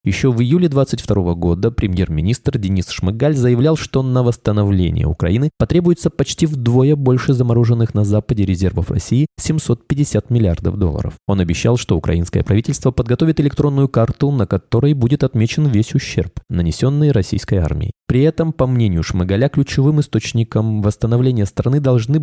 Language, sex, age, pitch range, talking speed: Russian, male, 20-39, 100-140 Hz, 140 wpm